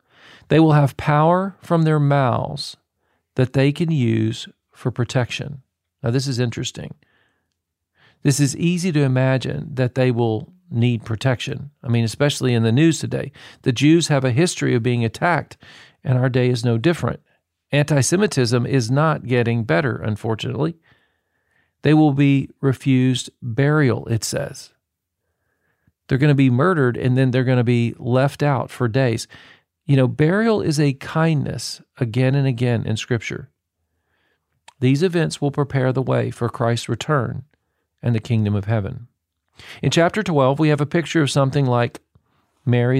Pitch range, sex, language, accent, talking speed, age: 120-145 Hz, male, English, American, 160 wpm, 40-59